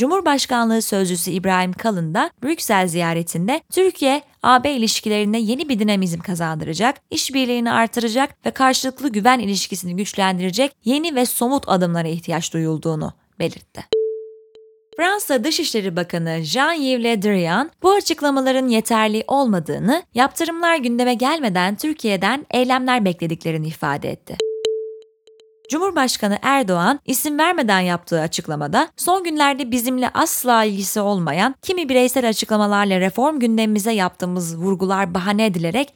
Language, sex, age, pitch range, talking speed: Turkish, female, 20-39, 185-275 Hz, 110 wpm